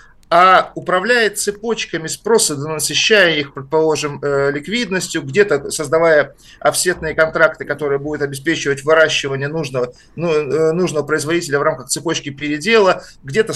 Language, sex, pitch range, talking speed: Russian, male, 150-200 Hz, 105 wpm